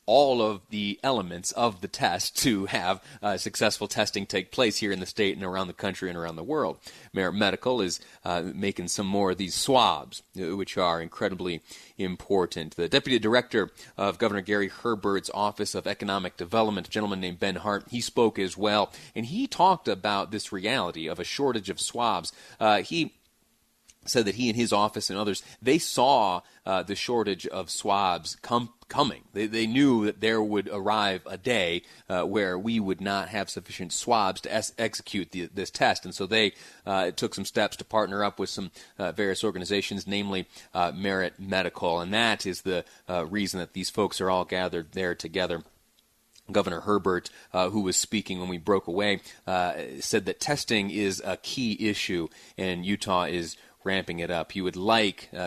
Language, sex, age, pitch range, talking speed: English, male, 30-49, 90-110 Hz, 190 wpm